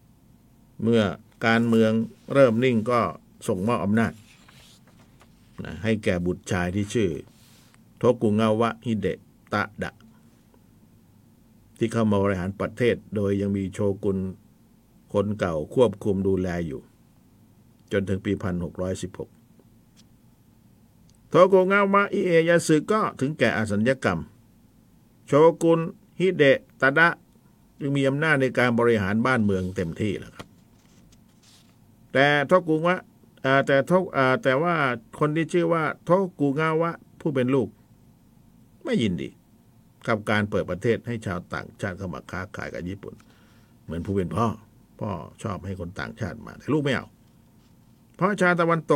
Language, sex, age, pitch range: Thai, male, 60-79, 105-140 Hz